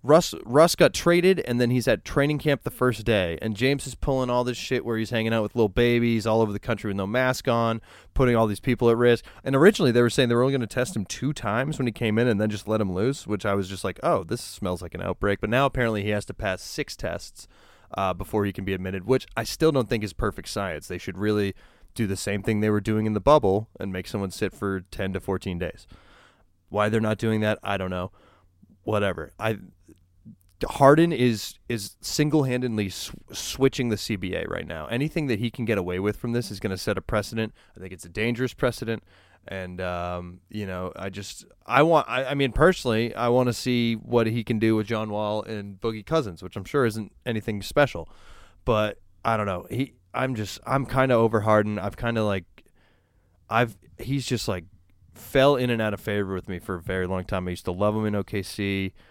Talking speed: 235 wpm